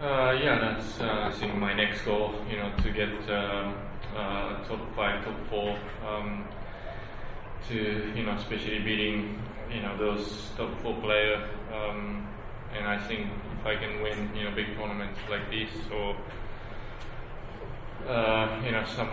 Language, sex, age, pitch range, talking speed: English, male, 20-39, 105-110 Hz, 155 wpm